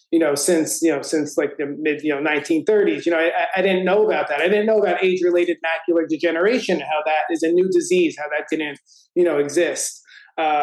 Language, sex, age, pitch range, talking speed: English, male, 30-49, 160-200 Hz, 230 wpm